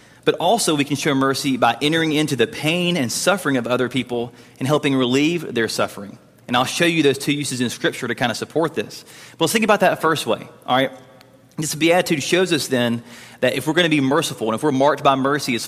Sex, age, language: male, 30-49, English